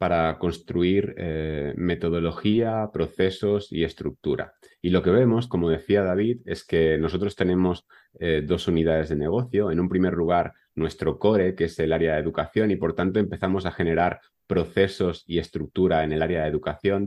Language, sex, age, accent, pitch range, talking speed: Spanish, male, 30-49, Spanish, 85-100 Hz, 170 wpm